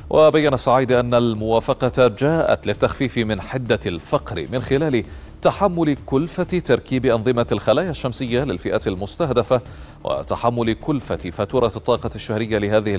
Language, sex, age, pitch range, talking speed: Arabic, male, 30-49, 110-140 Hz, 115 wpm